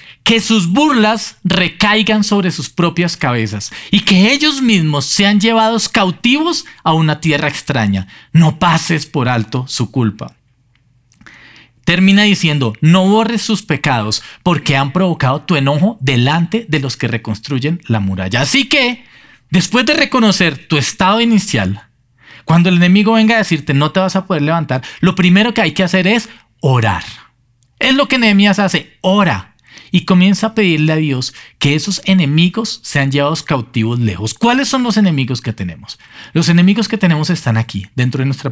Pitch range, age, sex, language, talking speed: 125-190 Hz, 40-59, male, Spanish, 165 wpm